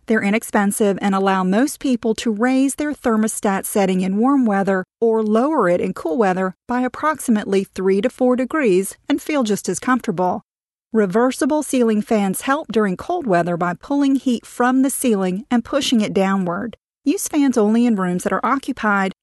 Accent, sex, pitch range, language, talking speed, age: American, female, 195-260 Hz, English, 175 wpm, 40-59